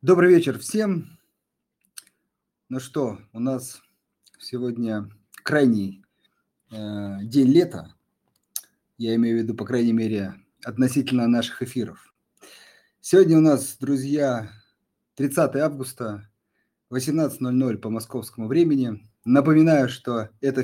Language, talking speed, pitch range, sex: Russian, 100 wpm, 115-145 Hz, male